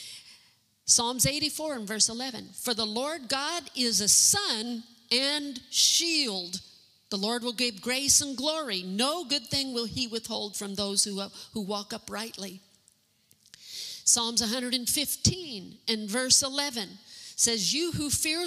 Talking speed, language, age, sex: 135 wpm, English, 50-69, female